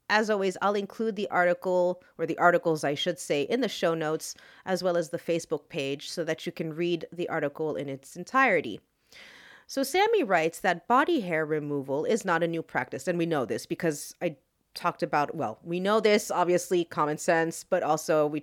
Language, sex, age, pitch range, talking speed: English, female, 30-49, 160-215 Hz, 200 wpm